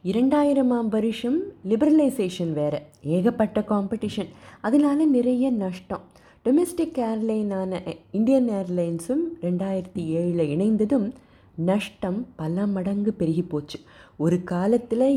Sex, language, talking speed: female, Tamil, 90 wpm